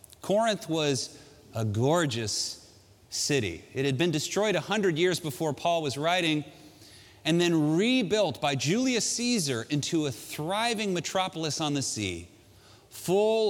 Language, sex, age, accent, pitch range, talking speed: Dutch, male, 30-49, American, 135-210 Hz, 130 wpm